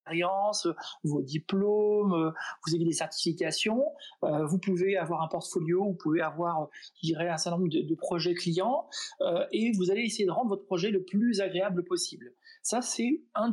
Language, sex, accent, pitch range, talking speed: French, male, French, 175-220 Hz, 160 wpm